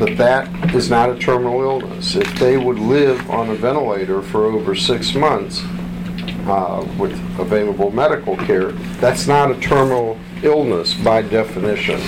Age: 50-69